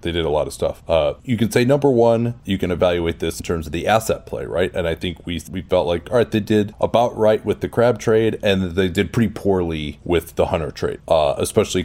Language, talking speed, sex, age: English, 260 wpm, male, 30-49